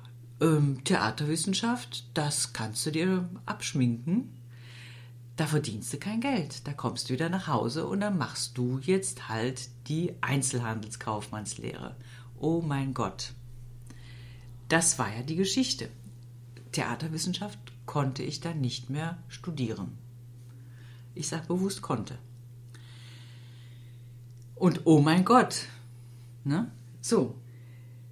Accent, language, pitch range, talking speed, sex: German, German, 120-180 Hz, 105 wpm, female